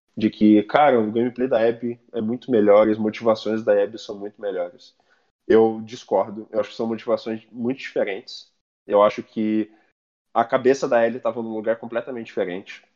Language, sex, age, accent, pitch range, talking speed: Portuguese, male, 20-39, Brazilian, 105-115 Hz, 180 wpm